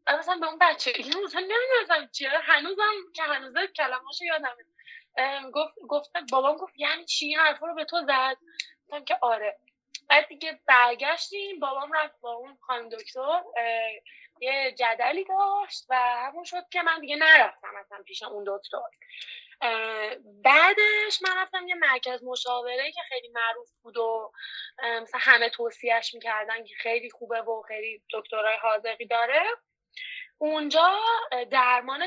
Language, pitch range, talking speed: Persian, 230-320 Hz, 140 wpm